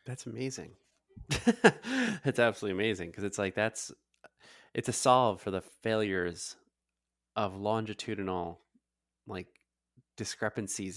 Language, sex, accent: English, male, American